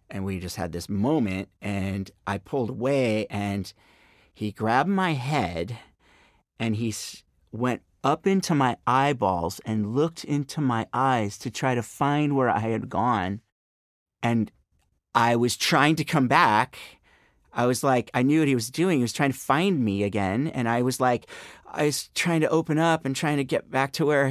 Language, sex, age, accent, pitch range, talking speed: English, male, 40-59, American, 100-135 Hz, 185 wpm